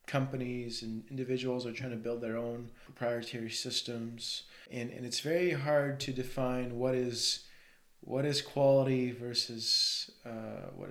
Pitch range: 120-135 Hz